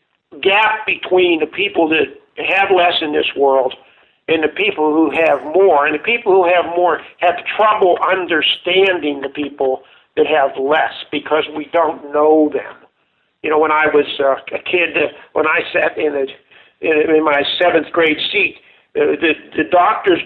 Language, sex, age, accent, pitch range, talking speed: English, male, 50-69, American, 155-235 Hz, 175 wpm